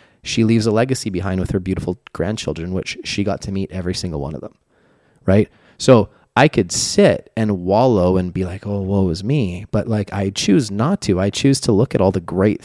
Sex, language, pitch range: male, English, 95-110 Hz